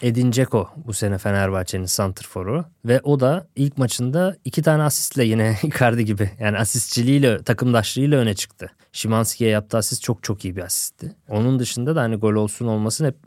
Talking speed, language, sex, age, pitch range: 170 wpm, Turkish, male, 20-39, 110-145 Hz